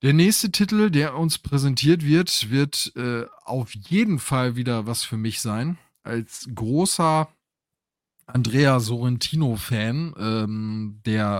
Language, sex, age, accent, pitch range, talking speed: German, male, 20-39, German, 105-125 Hz, 115 wpm